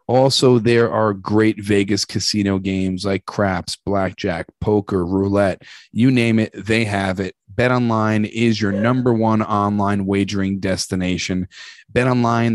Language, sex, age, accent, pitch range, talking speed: English, male, 30-49, American, 100-120 Hz, 130 wpm